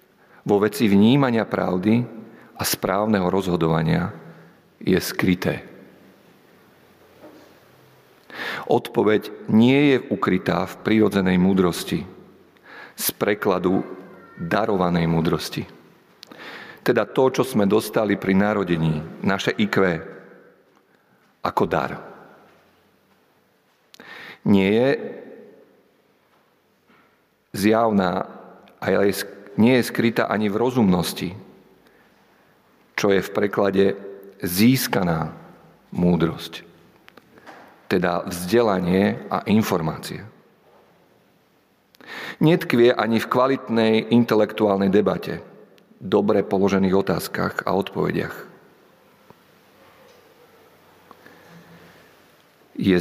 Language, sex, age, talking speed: Slovak, male, 50-69, 70 wpm